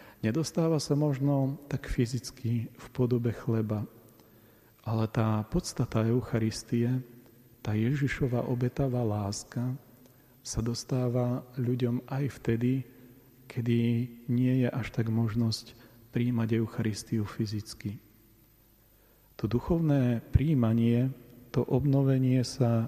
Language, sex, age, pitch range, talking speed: Slovak, male, 40-59, 110-125 Hz, 95 wpm